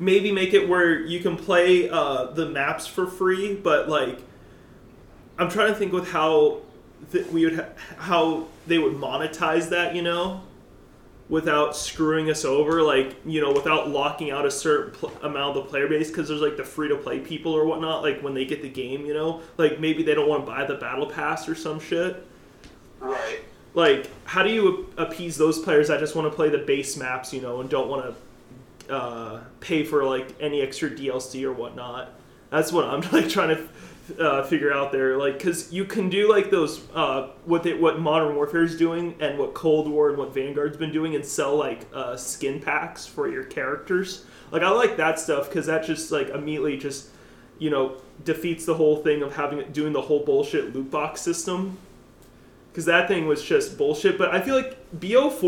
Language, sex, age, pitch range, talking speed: English, male, 30-49, 145-180 Hz, 205 wpm